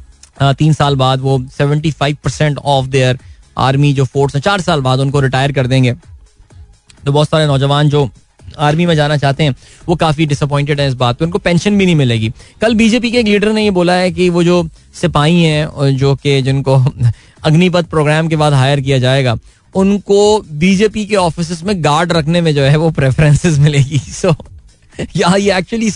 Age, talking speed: 20-39, 175 wpm